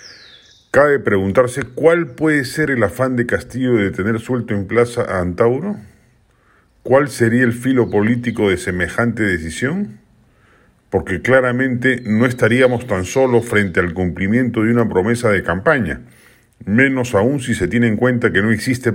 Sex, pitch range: male, 95-120 Hz